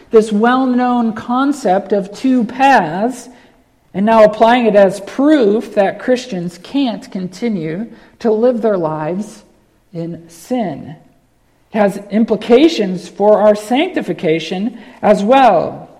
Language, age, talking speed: English, 50-69, 115 wpm